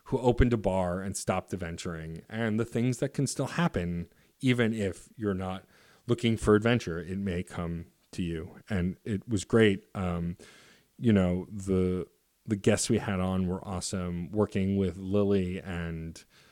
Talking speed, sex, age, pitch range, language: 165 wpm, male, 30-49, 85-110 Hz, English